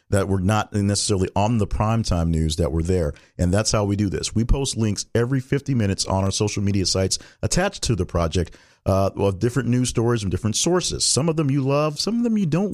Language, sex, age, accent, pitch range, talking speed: English, male, 40-59, American, 95-130 Hz, 235 wpm